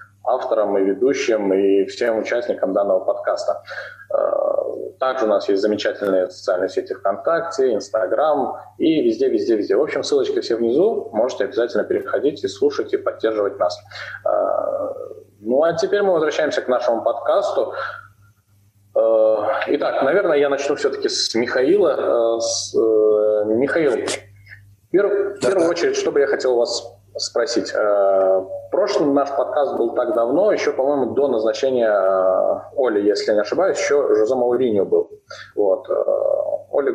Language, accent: Russian, native